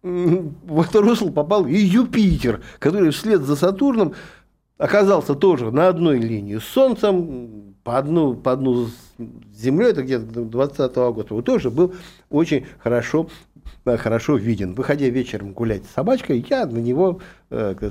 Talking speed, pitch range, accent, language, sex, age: 135 wpm, 110-180 Hz, native, Russian, male, 50-69